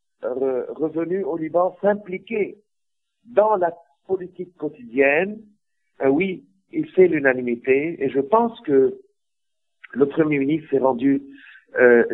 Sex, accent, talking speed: male, French, 115 wpm